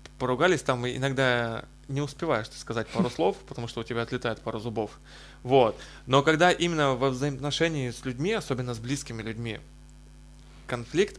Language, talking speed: Russian, 150 wpm